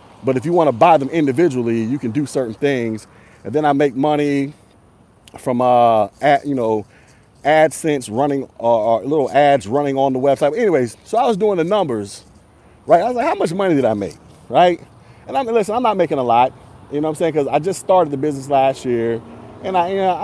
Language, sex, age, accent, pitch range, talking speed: English, male, 30-49, American, 125-180 Hz, 230 wpm